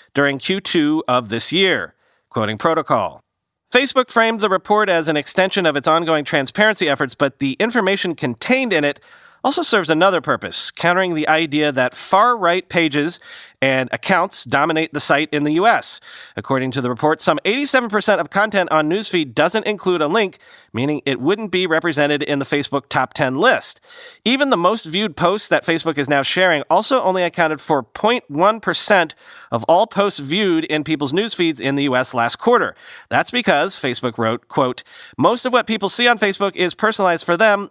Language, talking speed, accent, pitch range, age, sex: English, 175 wpm, American, 140-200 Hz, 40-59, male